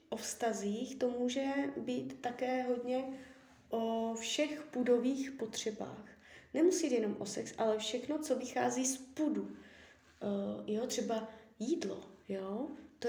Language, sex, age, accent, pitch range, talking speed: Czech, female, 20-39, native, 205-260 Hz, 115 wpm